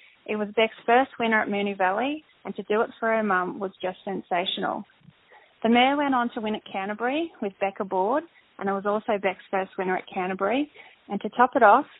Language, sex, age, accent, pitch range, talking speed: French, female, 20-39, Australian, 195-235 Hz, 215 wpm